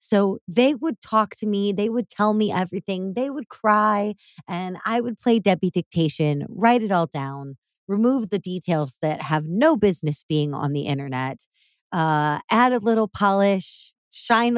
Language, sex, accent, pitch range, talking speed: English, female, American, 170-235 Hz, 170 wpm